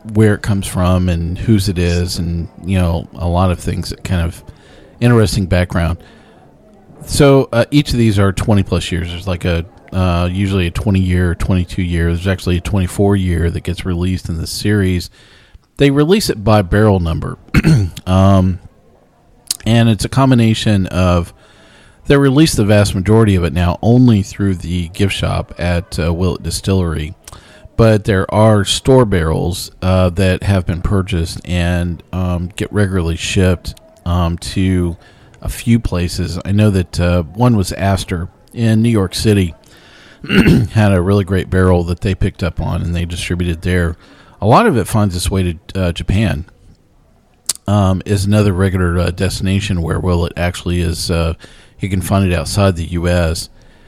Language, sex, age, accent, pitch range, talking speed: English, male, 40-59, American, 85-105 Hz, 170 wpm